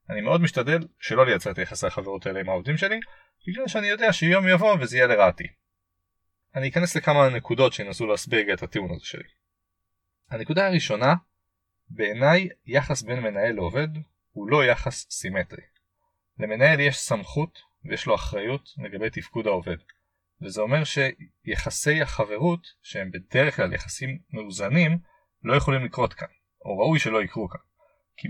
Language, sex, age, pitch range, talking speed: Hebrew, male, 30-49, 110-160 Hz, 145 wpm